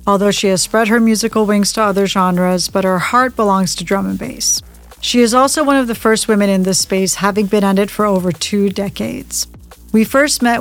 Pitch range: 195-215 Hz